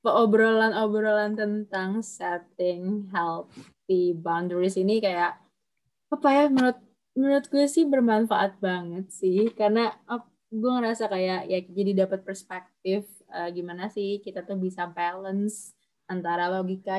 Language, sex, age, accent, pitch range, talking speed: Indonesian, female, 20-39, native, 180-210 Hz, 120 wpm